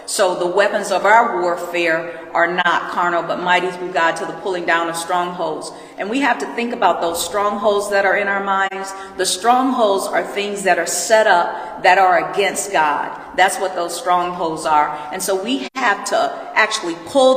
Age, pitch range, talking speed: 50-69, 185-235 Hz, 195 wpm